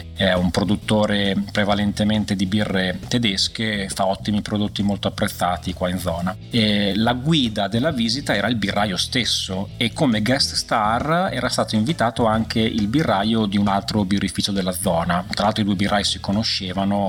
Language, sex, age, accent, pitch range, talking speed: Italian, male, 30-49, native, 100-115 Hz, 165 wpm